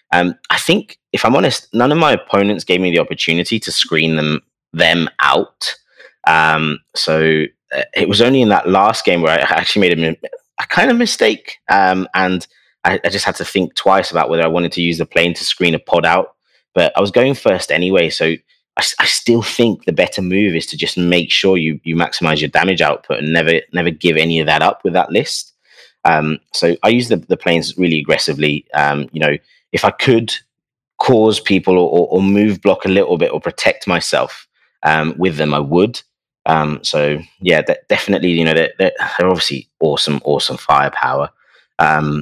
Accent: British